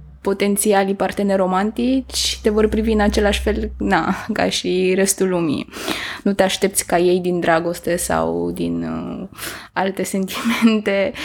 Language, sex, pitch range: Romanian, female, 190-235 Hz